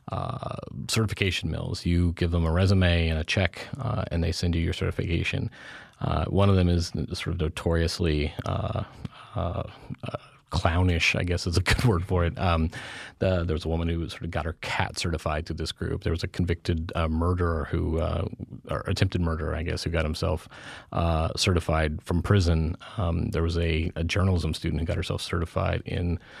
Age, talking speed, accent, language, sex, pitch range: 30-49, 195 wpm, American, English, male, 85-95 Hz